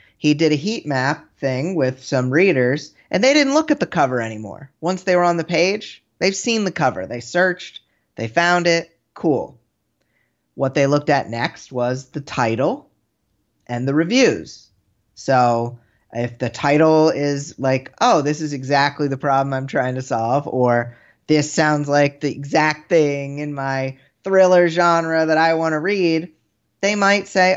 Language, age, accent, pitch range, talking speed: English, 30-49, American, 130-170 Hz, 170 wpm